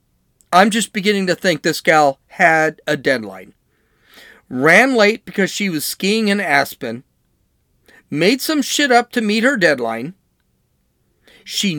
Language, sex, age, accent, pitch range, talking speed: English, male, 40-59, American, 145-225 Hz, 135 wpm